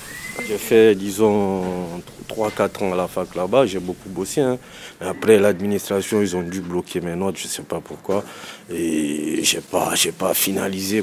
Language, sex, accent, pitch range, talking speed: French, male, French, 90-110 Hz, 180 wpm